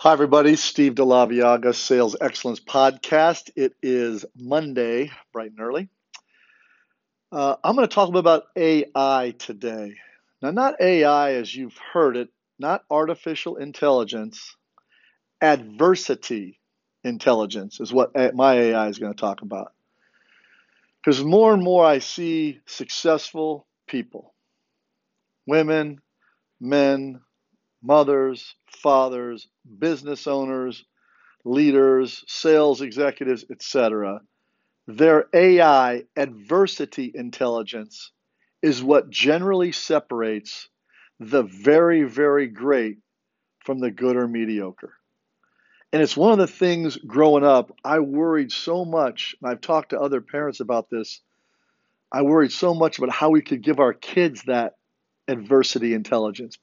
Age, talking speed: 50-69, 120 wpm